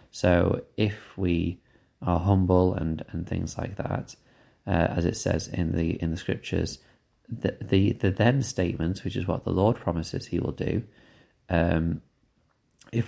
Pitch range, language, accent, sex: 85-100 Hz, English, British, male